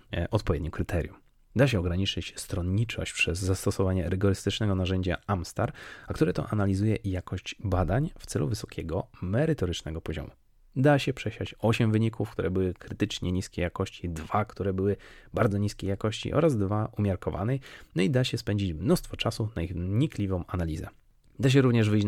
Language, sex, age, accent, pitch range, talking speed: Polish, male, 30-49, native, 90-115 Hz, 150 wpm